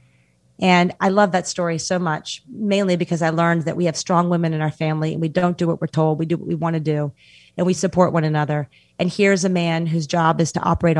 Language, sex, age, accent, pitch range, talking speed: English, female, 30-49, American, 160-190 Hz, 255 wpm